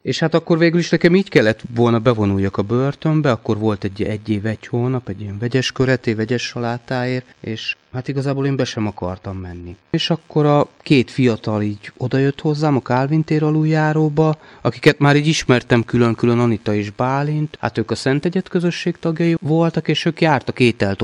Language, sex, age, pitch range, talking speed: Hungarian, male, 30-49, 110-155 Hz, 185 wpm